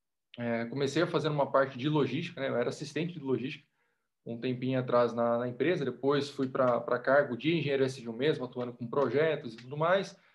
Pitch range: 140-175 Hz